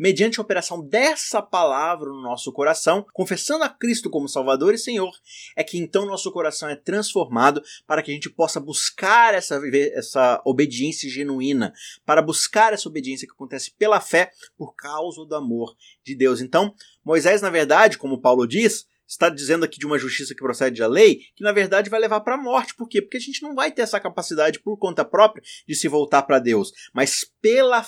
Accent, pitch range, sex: Brazilian, 145-215 Hz, male